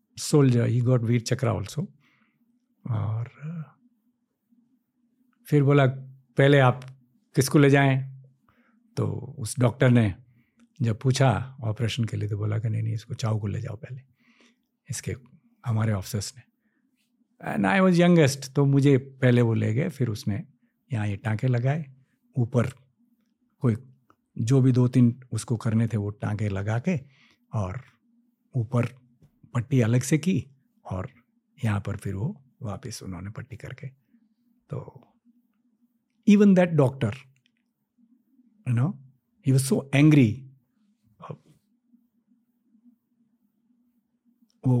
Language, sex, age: Hindi, male, 60-79